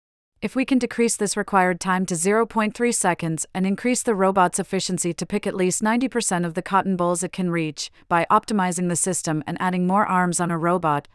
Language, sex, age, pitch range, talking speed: English, female, 40-59, 170-200 Hz, 205 wpm